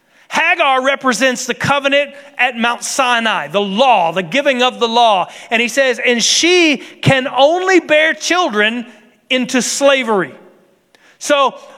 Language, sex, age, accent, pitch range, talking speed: English, male, 40-59, American, 205-270 Hz, 130 wpm